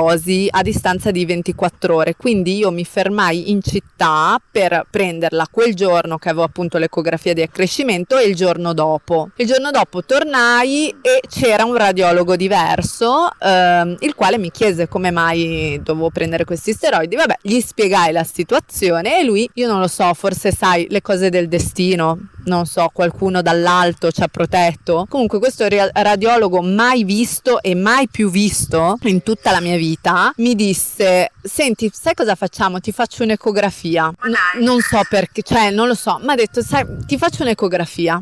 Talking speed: 170 wpm